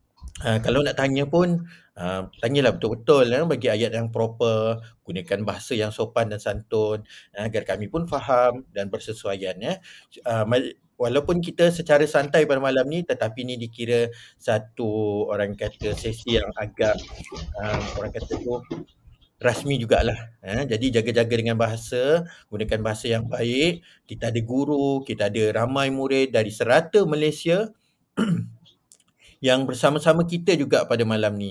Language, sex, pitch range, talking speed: Malay, male, 105-130 Hz, 145 wpm